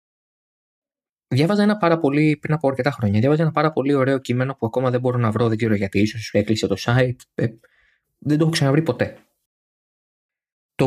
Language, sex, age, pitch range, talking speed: Greek, male, 20-39, 115-155 Hz, 180 wpm